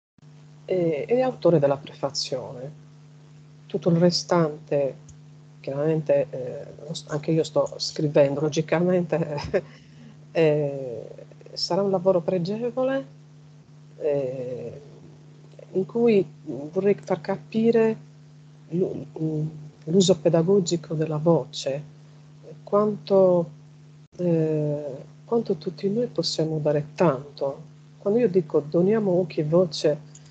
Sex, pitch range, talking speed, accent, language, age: female, 150-180 Hz, 90 wpm, native, Italian, 50-69